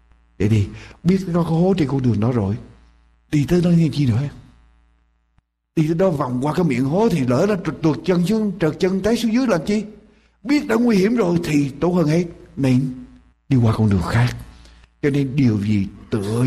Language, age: Vietnamese, 60-79